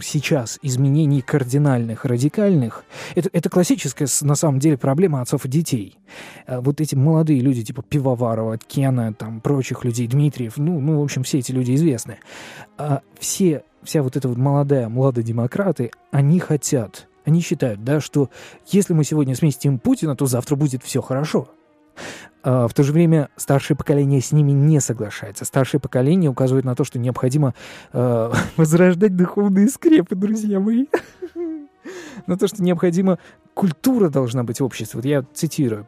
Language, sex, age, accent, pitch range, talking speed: Russian, male, 20-39, native, 130-170 Hz, 155 wpm